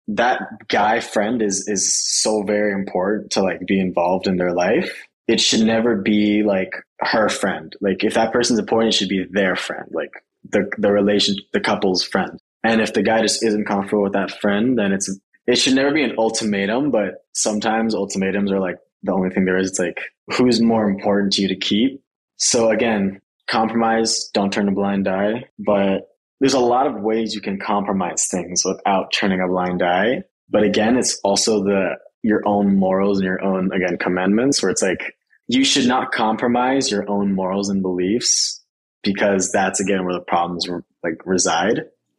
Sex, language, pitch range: male, English, 95-110 Hz